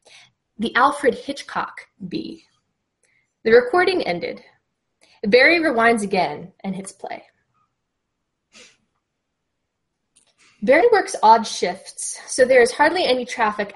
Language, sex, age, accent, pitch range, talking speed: English, female, 10-29, American, 195-290 Hz, 100 wpm